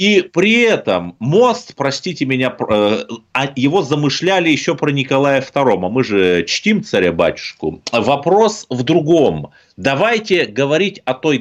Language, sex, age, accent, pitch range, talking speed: Russian, male, 30-49, native, 130-185 Hz, 125 wpm